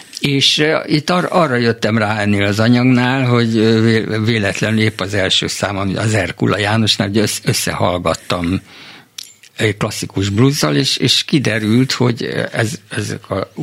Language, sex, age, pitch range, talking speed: Hungarian, male, 60-79, 100-130 Hz, 130 wpm